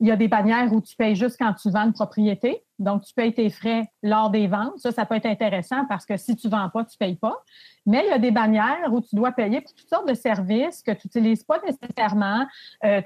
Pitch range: 215-265 Hz